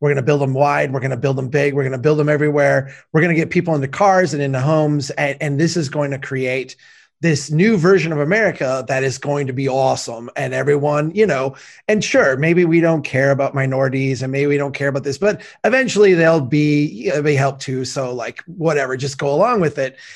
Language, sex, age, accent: English, male, 30-49, American